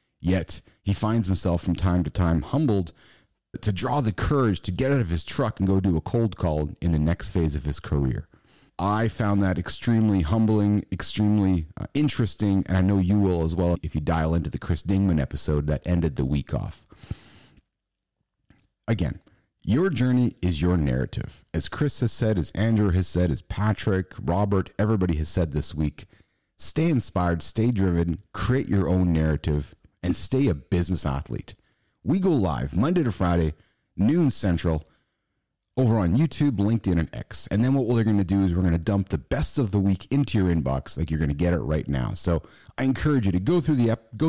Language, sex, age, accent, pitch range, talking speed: English, male, 30-49, American, 85-115 Hz, 200 wpm